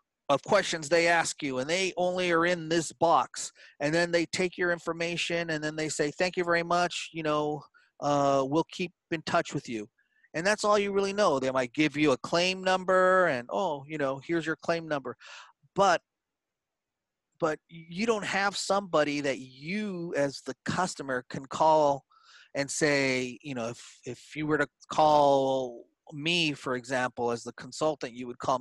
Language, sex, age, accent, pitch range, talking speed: English, male, 30-49, American, 135-170 Hz, 185 wpm